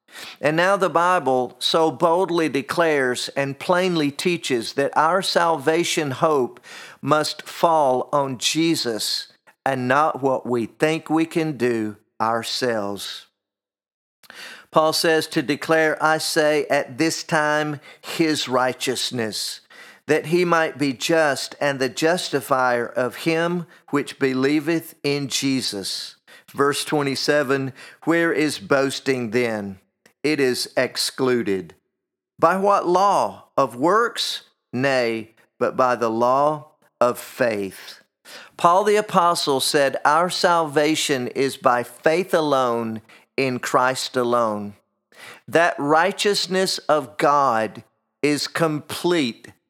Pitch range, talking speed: 125-165 Hz, 110 wpm